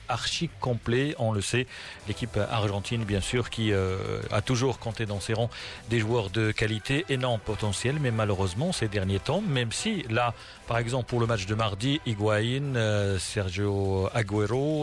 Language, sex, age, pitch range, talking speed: Arabic, male, 40-59, 110-135 Hz, 165 wpm